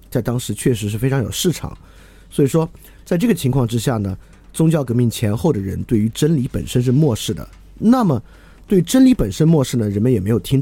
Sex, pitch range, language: male, 95-150 Hz, Chinese